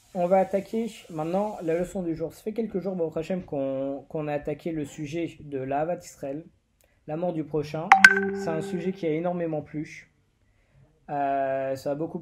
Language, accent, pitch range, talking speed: French, French, 150-205 Hz, 185 wpm